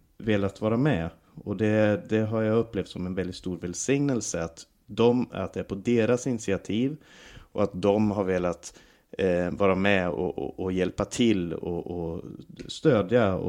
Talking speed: 150 wpm